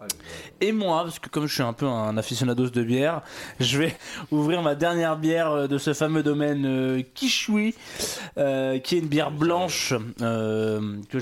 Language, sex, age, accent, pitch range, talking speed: French, male, 20-39, French, 130-160 Hz, 175 wpm